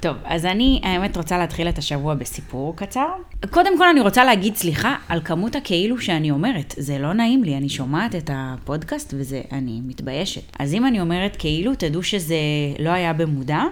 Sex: female